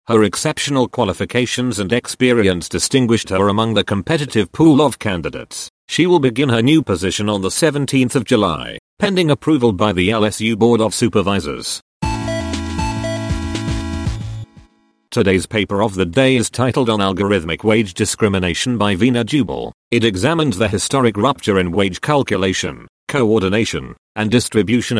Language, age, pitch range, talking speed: English, 40-59, 100-125 Hz, 135 wpm